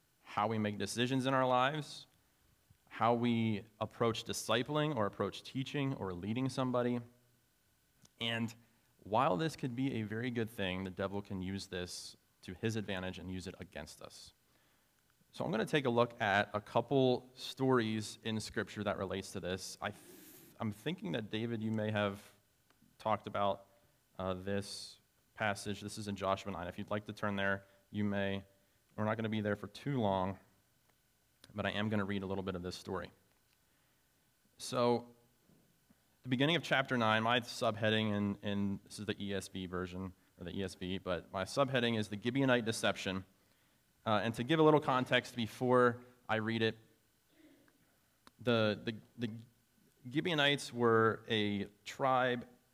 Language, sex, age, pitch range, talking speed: English, male, 30-49, 100-125 Hz, 165 wpm